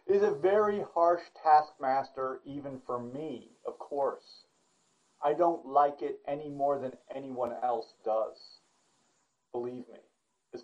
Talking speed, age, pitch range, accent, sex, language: 130 wpm, 40-59, 145-200 Hz, American, male, English